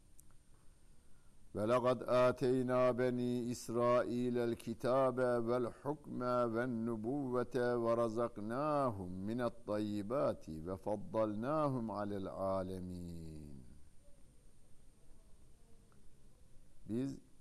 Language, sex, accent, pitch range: Turkish, male, native, 95-125 Hz